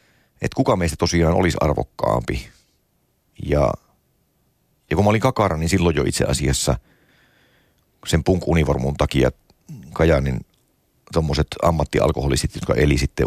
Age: 50-69